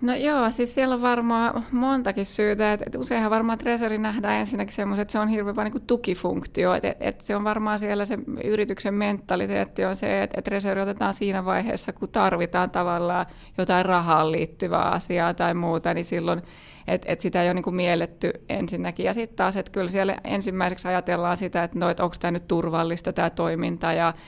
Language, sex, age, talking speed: Finnish, female, 20-39, 185 wpm